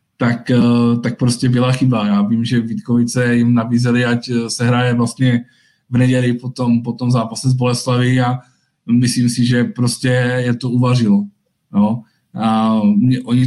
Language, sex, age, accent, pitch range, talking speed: Czech, male, 20-39, native, 120-130 Hz, 145 wpm